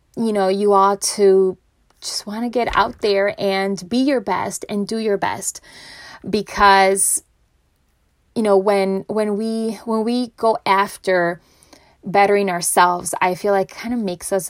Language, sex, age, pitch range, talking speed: English, female, 20-39, 185-215 Hz, 155 wpm